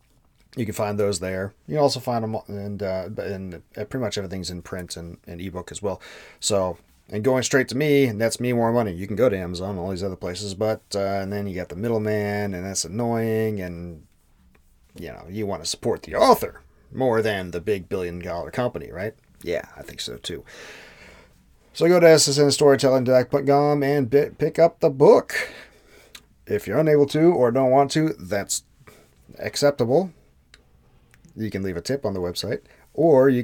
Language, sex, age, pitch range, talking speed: English, male, 30-49, 95-135 Hz, 200 wpm